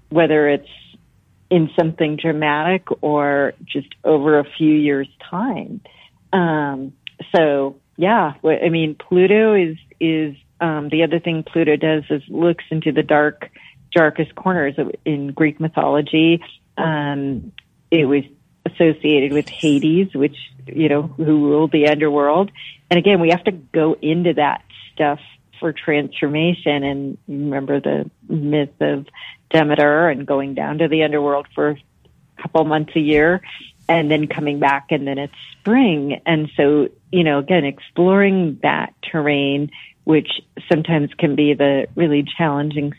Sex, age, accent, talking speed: female, 40-59, American, 140 wpm